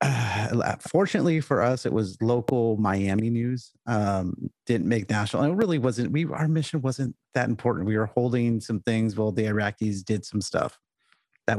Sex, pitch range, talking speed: male, 105-130 Hz, 180 wpm